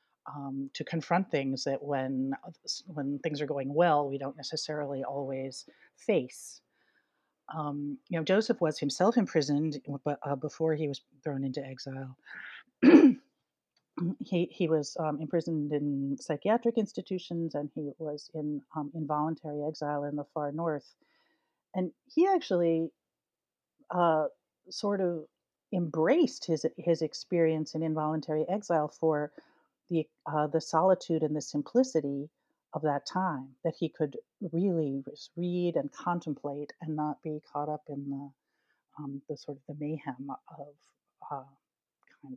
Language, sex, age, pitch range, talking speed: English, female, 40-59, 145-180 Hz, 135 wpm